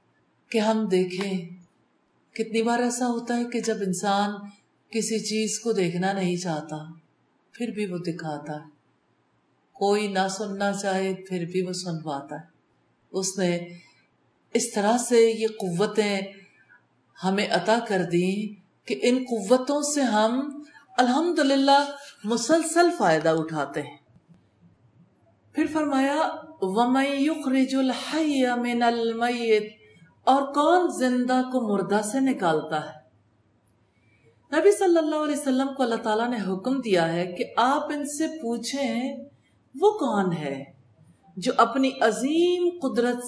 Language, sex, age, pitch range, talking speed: English, female, 50-69, 175-250 Hz, 125 wpm